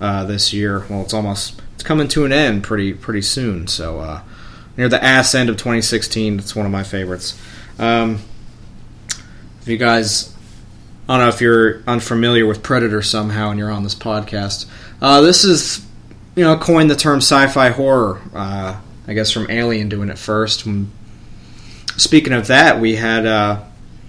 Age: 20-39